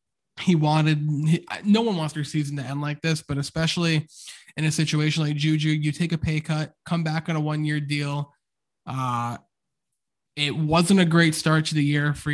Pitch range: 145-165 Hz